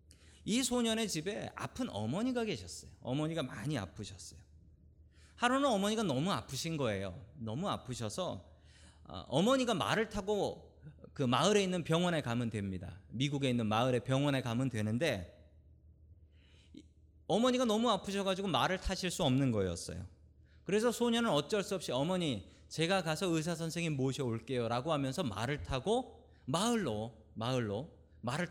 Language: Korean